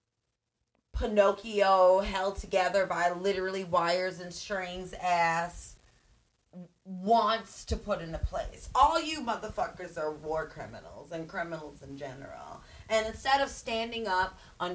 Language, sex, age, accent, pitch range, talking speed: English, female, 30-49, American, 165-205 Hz, 120 wpm